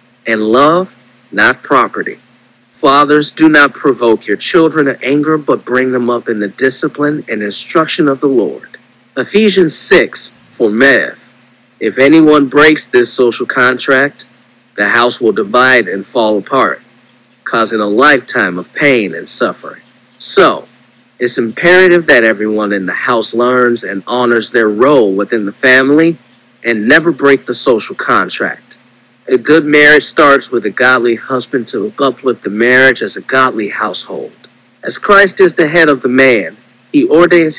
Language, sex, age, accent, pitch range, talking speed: English, male, 50-69, American, 120-160 Hz, 155 wpm